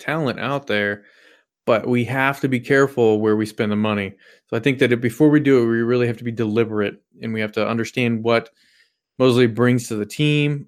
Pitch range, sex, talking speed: 105-130 Hz, male, 225 wpm